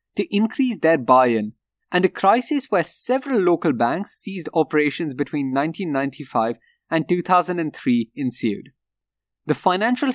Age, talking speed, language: 20-39, 120 wpm, English